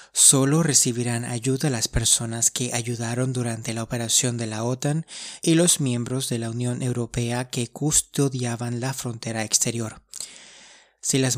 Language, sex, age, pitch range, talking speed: Spanish, male, 30-49, 120-130 Hz, 140 wpm